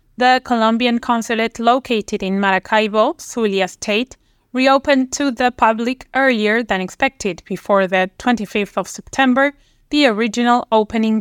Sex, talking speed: female, 125 wpm